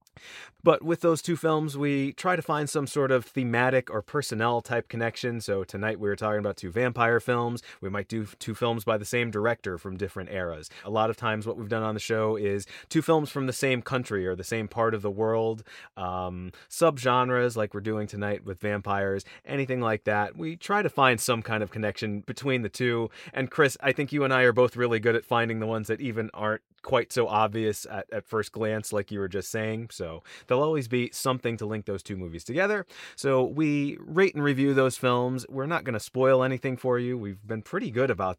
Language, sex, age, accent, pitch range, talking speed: English, male, 30-49, American, 105-130 Hz, 225 wpm